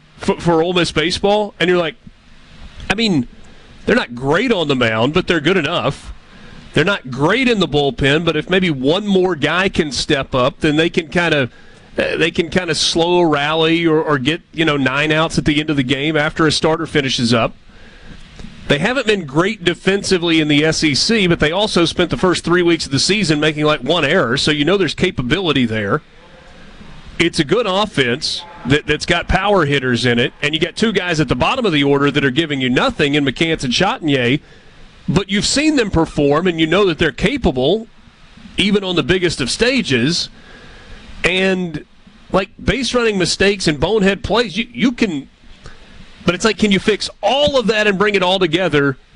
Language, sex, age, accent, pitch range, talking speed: English, male, 40-59, American, 150-190 Hz, 205 wpm